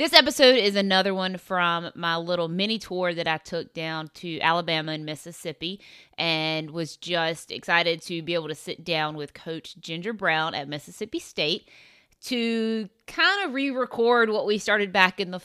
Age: 20-39